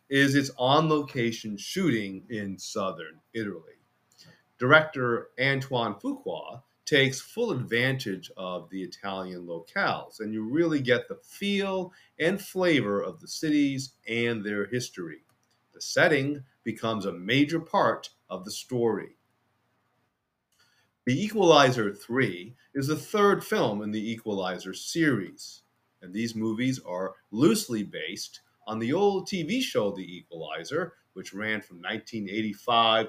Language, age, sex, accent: English, 40-59, male, American